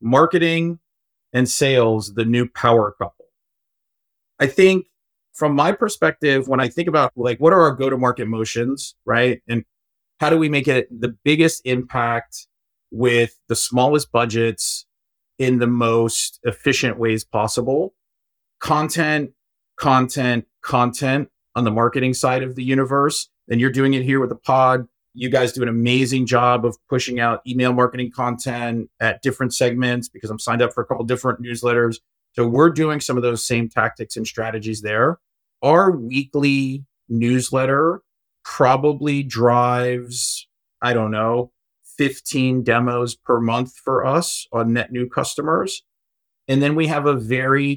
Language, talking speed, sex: English, 150 wpm, male